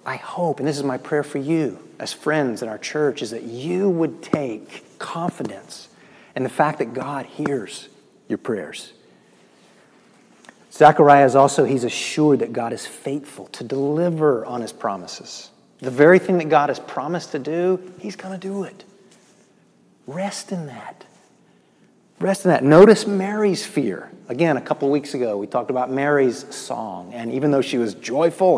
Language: English